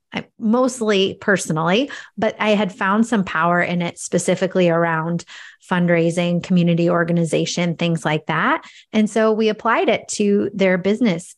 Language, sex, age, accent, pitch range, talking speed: English, female, 30-49, American, 175-225 Hz, 135 wpm